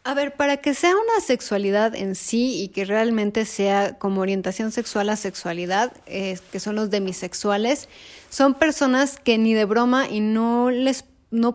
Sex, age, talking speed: female, 30-49, 170 wpm